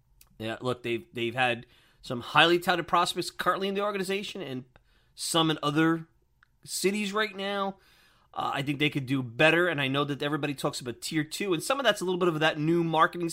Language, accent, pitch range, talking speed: English, American, 130-170 Hz, 210 wpm